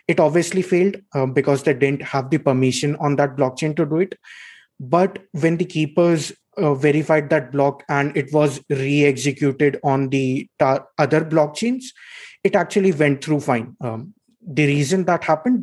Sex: male